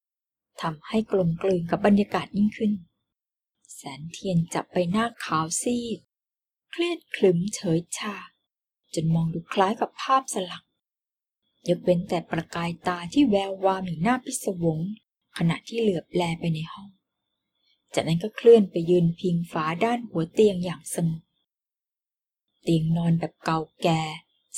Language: Thai